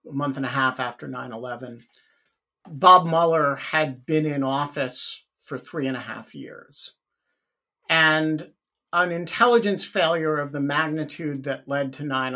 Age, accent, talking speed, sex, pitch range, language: 50-69, American, 150 wpm, male, 145-190 Hz, English